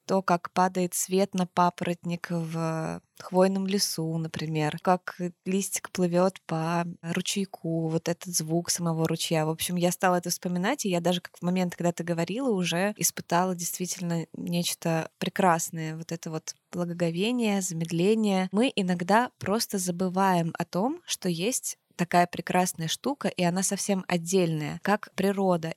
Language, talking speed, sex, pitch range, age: Russian, 145 wpm, female, 175-200 Hz, 20-39